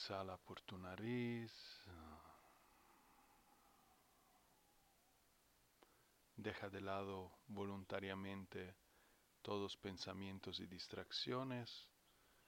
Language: Spanish